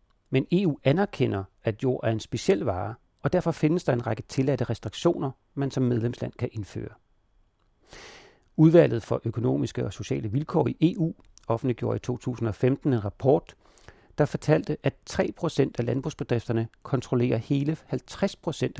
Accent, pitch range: native, 110-145 Hz